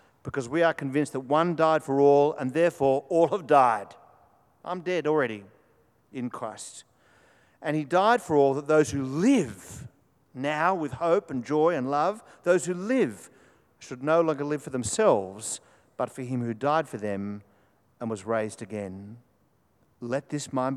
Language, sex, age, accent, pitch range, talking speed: English, male, 50-69, Australian, 115-145 Hz, 170 wpm